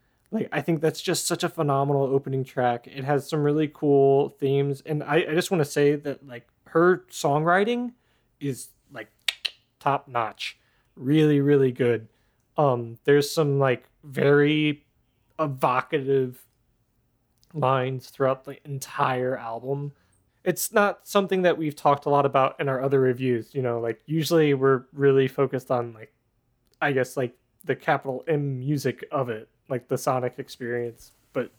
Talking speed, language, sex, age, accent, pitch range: 155 wpm, English, male, 20-39, American, 125-150 Hz